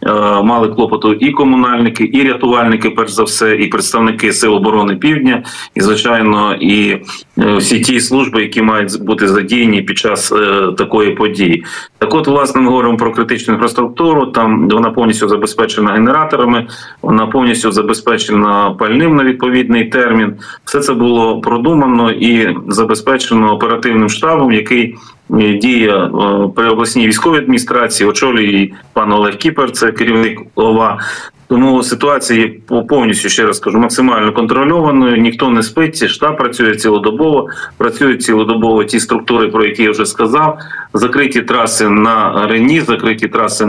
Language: Ukrainian